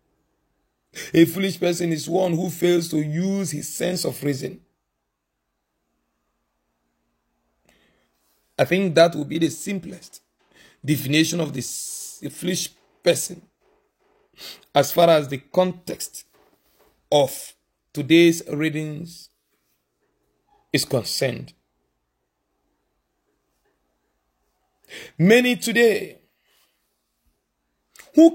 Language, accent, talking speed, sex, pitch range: English, Nigerian, 80 wpm, male, 150-205 Hz